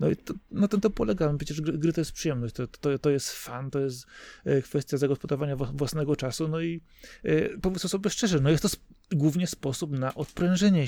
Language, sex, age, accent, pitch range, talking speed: Polish, male, 30-49, native, 125-150 Hz, 215 wpm